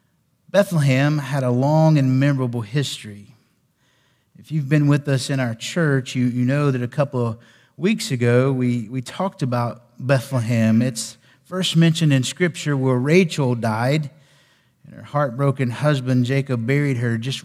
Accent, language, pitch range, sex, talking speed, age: American, English, 125-145 Hz, male, 155 wpm, 50-69